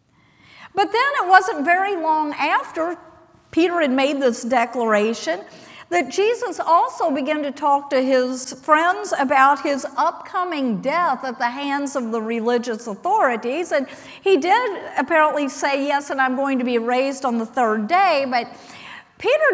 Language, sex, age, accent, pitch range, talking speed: English, female, 50-69, American, 240-335 Hz, 155 wpm